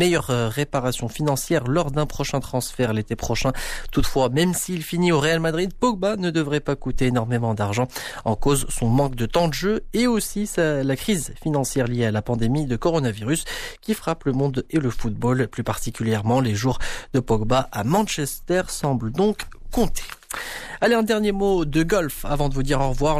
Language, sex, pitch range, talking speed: Arabic, male, 120-160 Hz, 185 wpm